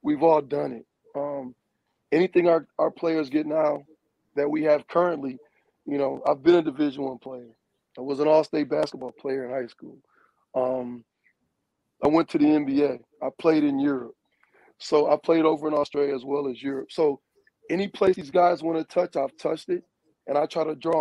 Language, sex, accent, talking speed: English, male, American, 195 wpm